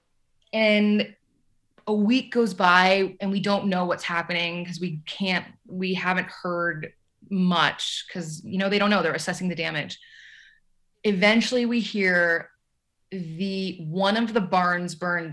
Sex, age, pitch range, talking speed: female, 20-39, 180-205 Hz, 145 wpm